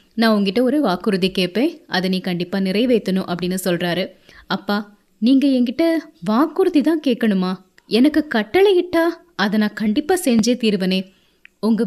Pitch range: 195-245 Hz